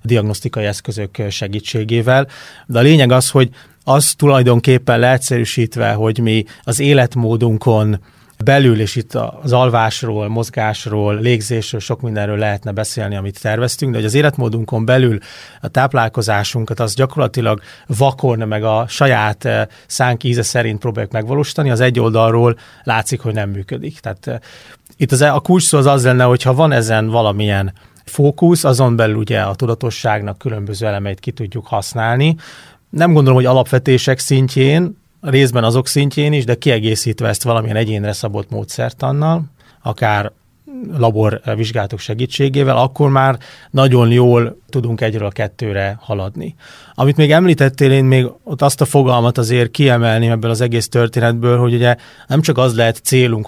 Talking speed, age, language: 140 wpm, 30-49, Hungarian